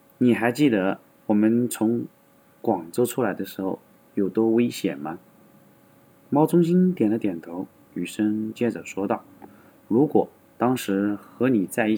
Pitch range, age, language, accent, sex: 95-135 Hz, 20-39, Chinese, native, male